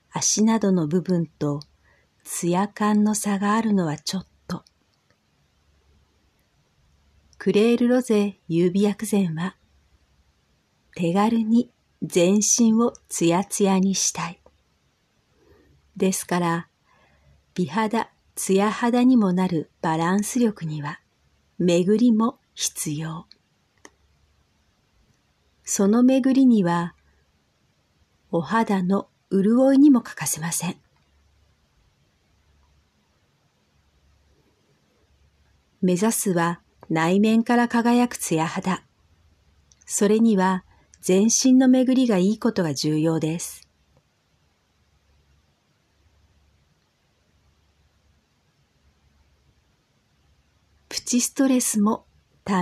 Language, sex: Japanese, female